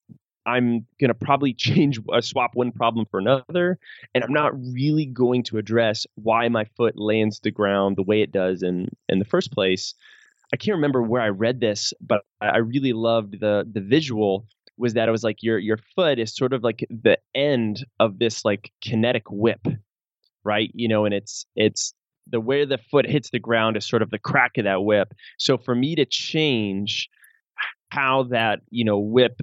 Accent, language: American, English